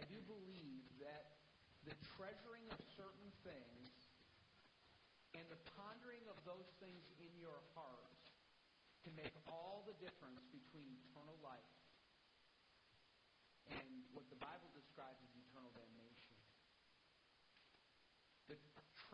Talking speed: 110 wpm